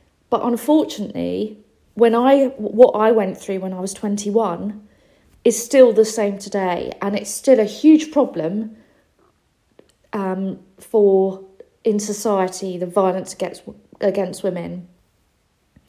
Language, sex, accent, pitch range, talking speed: English, female, British, 185-225 Hz, 120 wpm